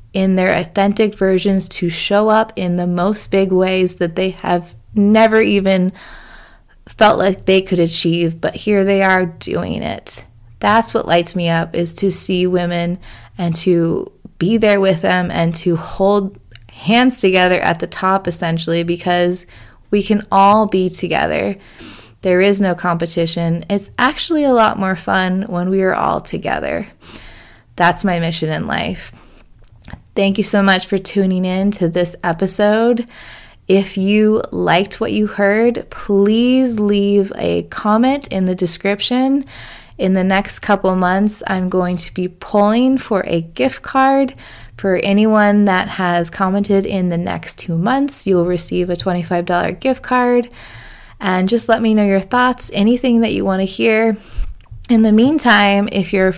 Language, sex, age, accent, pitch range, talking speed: English, female, 20-39, American, 175-210 Hz, 160 wpm